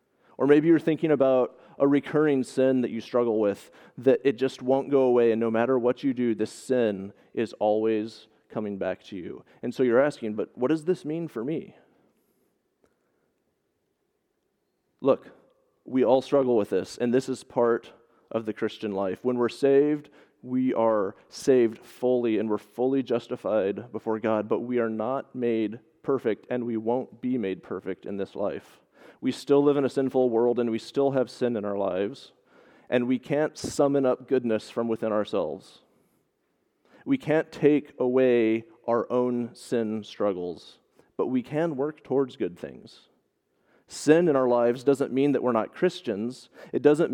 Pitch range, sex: 115-140 Hz, male